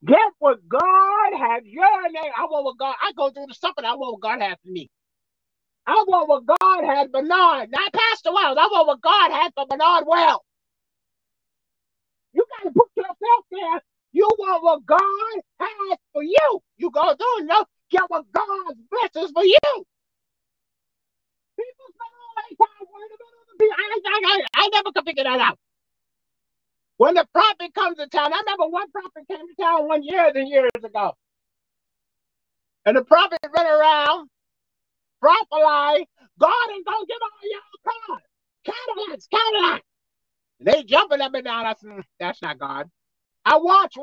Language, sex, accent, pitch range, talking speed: English, male, American, 285-400 Hz, 170 wpm